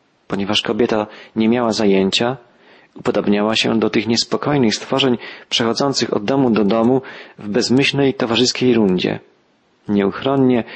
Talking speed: 115 wpm